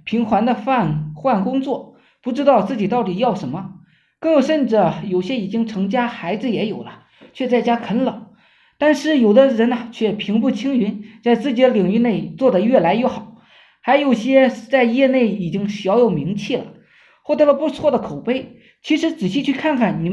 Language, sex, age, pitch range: Chinese, male, 20-39, 195-275 Hz